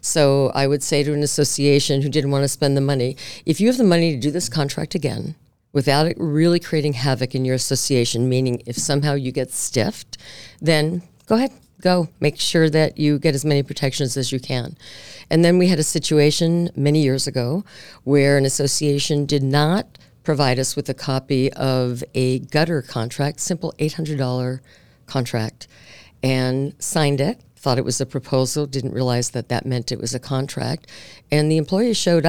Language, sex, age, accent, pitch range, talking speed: English, female, 50-69, American, 125-150 Hz, 185 wpm